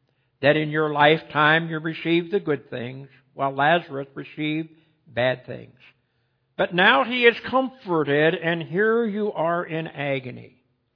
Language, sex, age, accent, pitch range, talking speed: English, male, 60-79, American, 140-185 Hz, 135 wpm